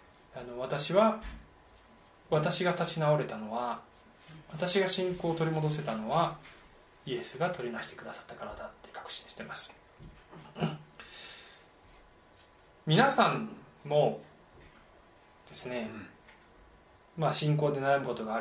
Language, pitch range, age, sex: Japanese, 125-205 Hz, 20-39, male